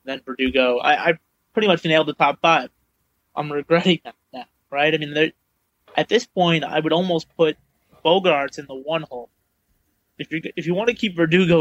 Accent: American